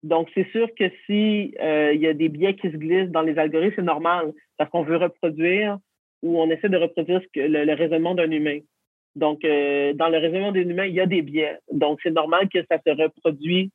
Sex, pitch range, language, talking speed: male, 155-185 Hz, French, 235 wpm